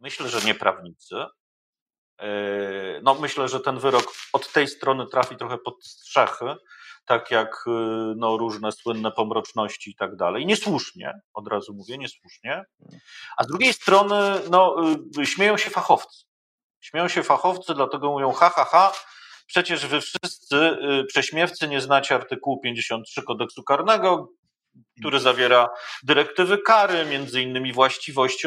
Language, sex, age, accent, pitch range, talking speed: Polish, male, 40-59, native, 125-185 Hz, 125 wpm